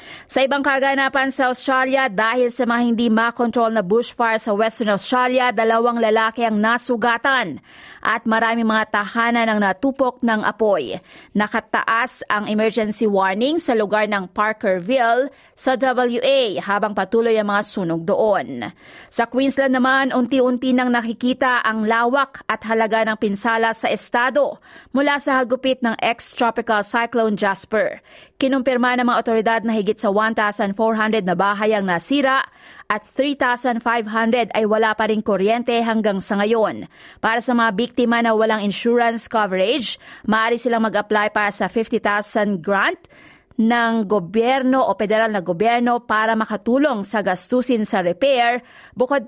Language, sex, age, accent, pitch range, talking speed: Filipino, female, 30-49, native, 215-250 Hz, 140 wpm